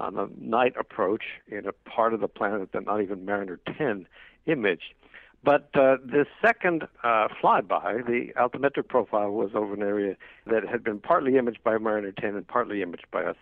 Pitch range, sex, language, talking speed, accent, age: 100-135 Hz, male, English, 190 wpm, American, 70-89